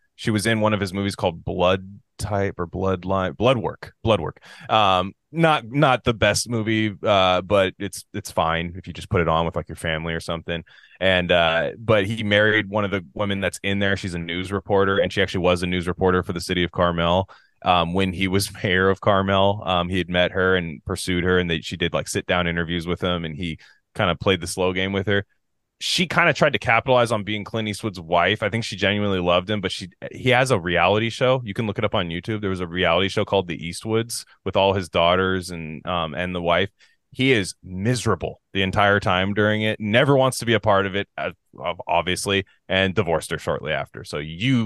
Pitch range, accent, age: 90-110 Hz, American, 20-39